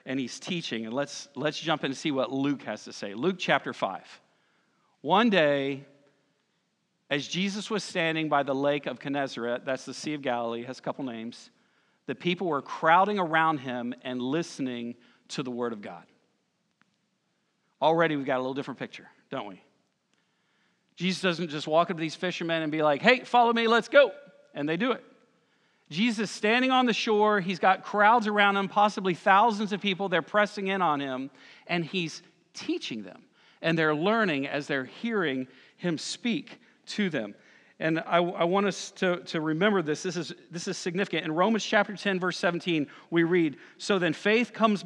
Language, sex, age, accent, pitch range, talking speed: English, male, 50-69, American, 150-205 Hz, 185 wpm